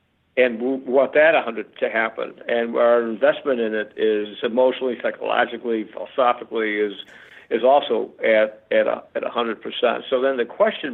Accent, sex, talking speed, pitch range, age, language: American, male, 160 wpm, 110-130 Hz, 60-79, English